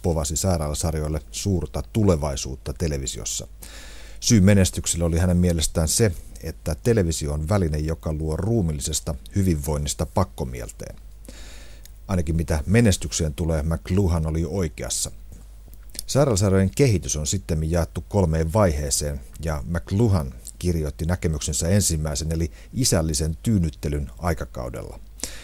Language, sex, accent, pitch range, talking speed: Finnish, male, native, 80-95 Hz, 100 wpm